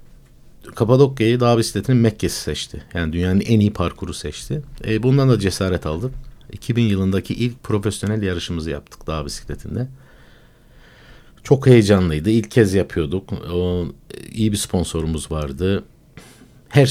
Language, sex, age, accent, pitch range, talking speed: Turkish, male, 60-79, native, 90-125 Hz, 125 wpm